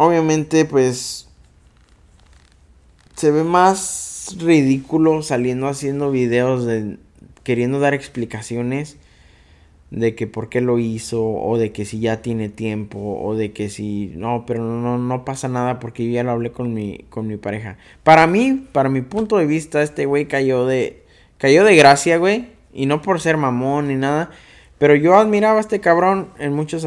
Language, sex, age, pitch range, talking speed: Spanish, male, 20-39, 115-150 Hz, 165 wpm